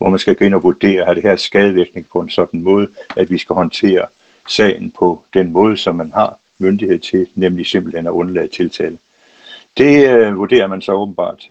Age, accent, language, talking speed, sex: 60-79, native, Danish, 205 wpm, male